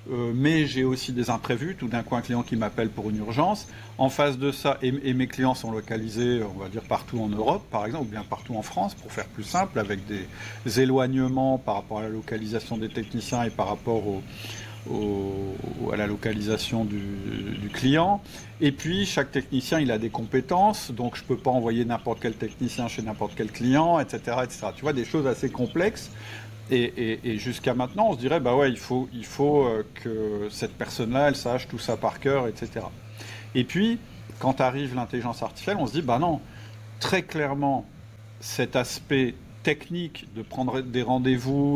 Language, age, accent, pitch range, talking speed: French, 50-69, French, 110-135 Hz, 190 wpm